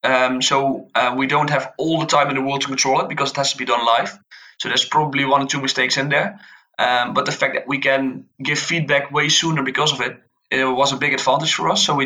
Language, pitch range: English, 125-140 Hz